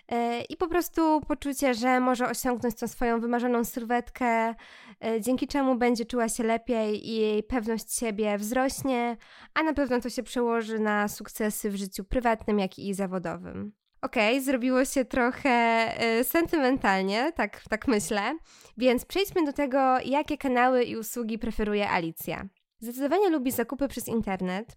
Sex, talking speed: female, 145 wpm